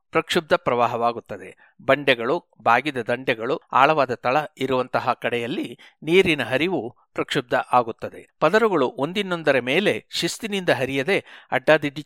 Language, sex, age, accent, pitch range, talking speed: Kannada, male, 60-79, native, 130-180 Hz, 95 wpm